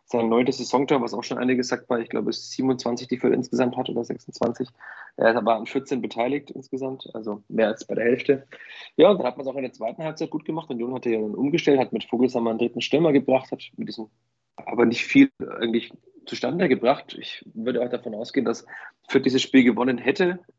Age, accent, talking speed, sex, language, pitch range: 20-39, German, 225 wpm, male, German, 120-135 Hz